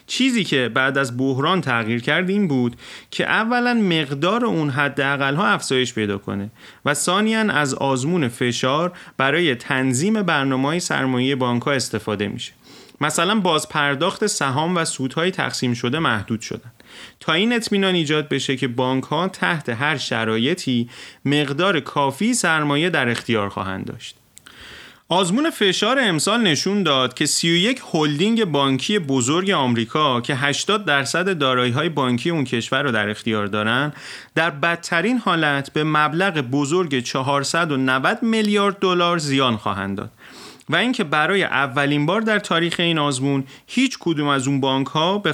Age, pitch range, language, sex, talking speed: 30-49, 125-185 Hz, Persian, male, 145 wpm